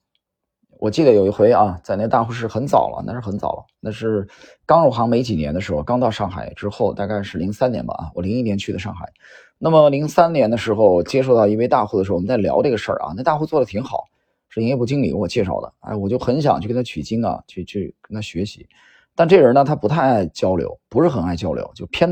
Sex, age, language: male, 20-39, Chinese